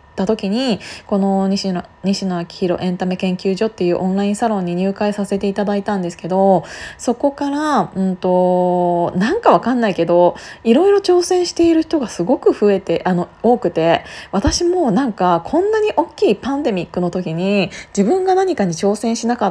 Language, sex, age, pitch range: Japanese, female, 20-39, 180-225 Hz